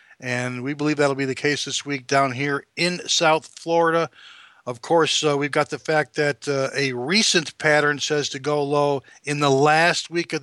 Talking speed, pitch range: 200 wpm, 140-160 Hz